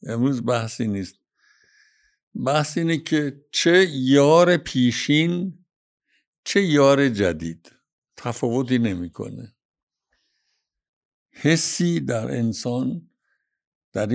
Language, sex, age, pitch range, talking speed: Persian, male, 60-79, 115-155 Hz, 85 wpm